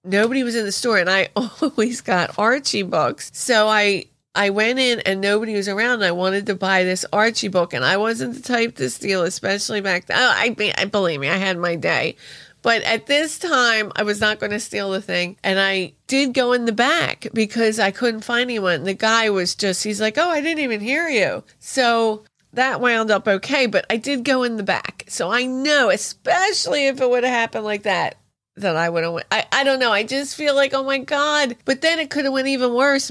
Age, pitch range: 30-49, 190-245 Hz